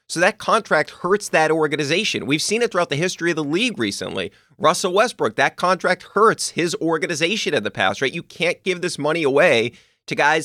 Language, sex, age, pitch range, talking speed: English, male, 30-49, 120-165 Hz, 200 wpm